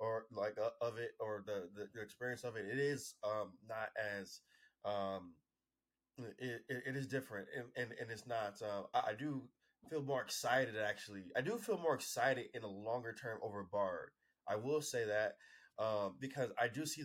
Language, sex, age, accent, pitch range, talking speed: English, male, 20-39, American, 105-130 Hz, 195 wpm